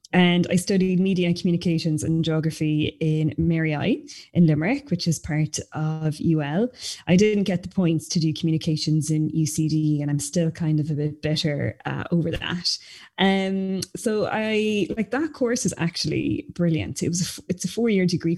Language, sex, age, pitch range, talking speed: English, female, 20-39, 160-195 Hz, 185 wpm